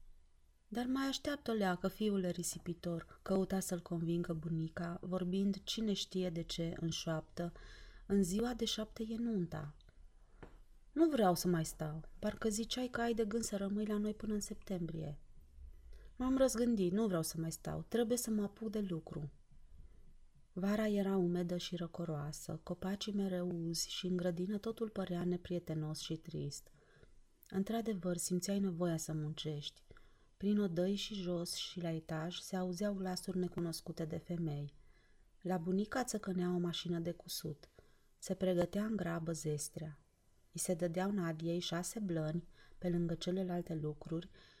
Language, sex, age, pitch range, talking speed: Romanian, female, 30-49, 165-205 Hz, 150 wpm